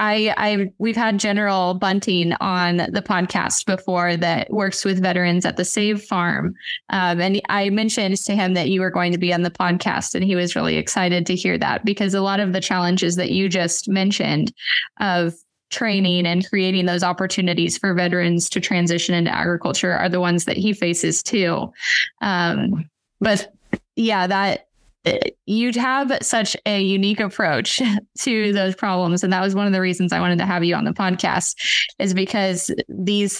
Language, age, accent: English, 20-39, American